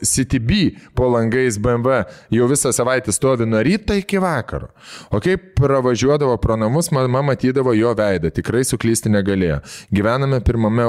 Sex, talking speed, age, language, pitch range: male, 145 wpm, 20-39, English, 100-130 Hz